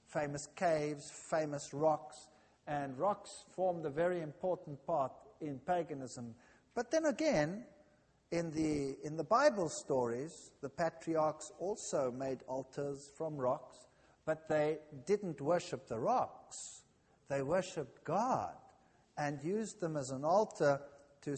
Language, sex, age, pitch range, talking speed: English, male, 50-69, 140-190 Hz, 125 wpm